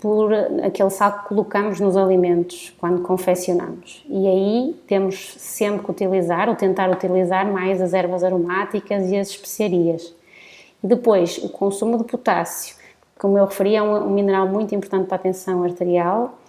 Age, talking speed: 20-39, 155 wpm